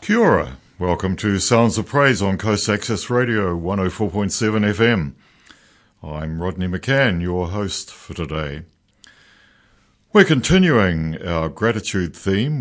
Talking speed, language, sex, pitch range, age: 115 wpm, English, male, 80-110 Hz, 60-79